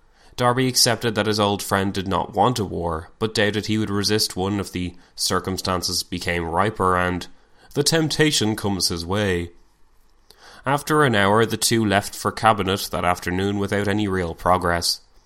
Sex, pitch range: male, 90-110 Hz